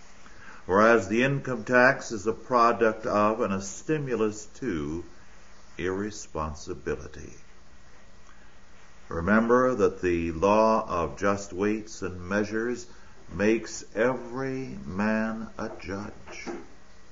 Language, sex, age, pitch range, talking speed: English, male, 50-69, 90-120 Hz, 95 wpm